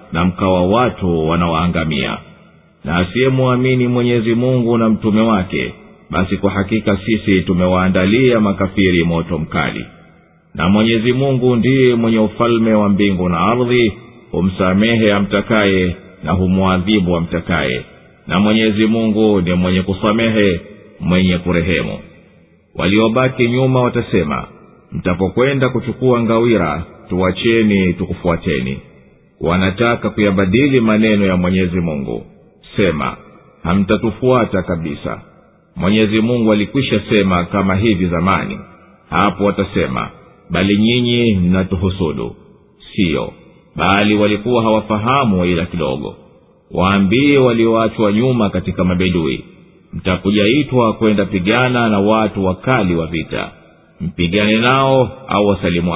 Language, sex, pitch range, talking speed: Swahili, male, 90-115 Hz, 100 wpm